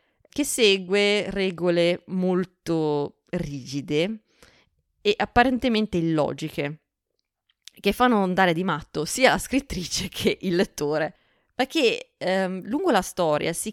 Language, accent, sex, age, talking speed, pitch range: Italian, native, female, 20-39, 110 wpm, 155-210 Hz